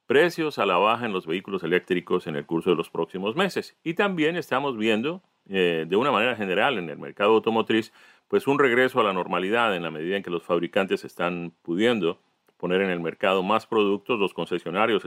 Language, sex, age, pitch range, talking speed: Spanish, male, 40-59, 100-140 Hz, 205 wpm